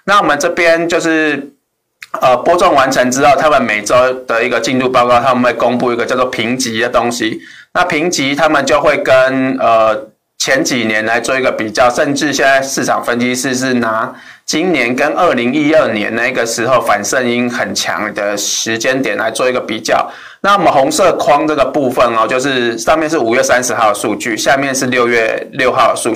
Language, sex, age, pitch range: Chinese, male, 20-39, 120-140 Hz